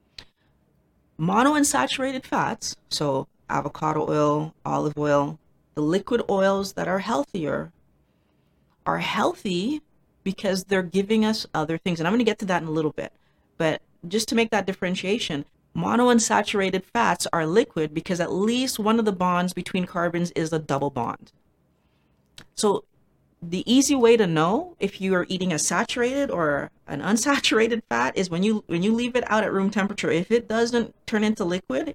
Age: 30-49